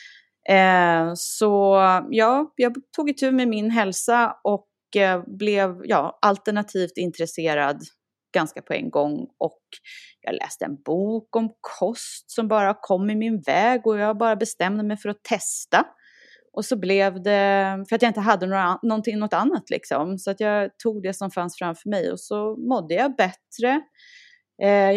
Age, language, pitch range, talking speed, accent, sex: 30-49, Swedish, 190-235 Hz, 165 wpm, native, female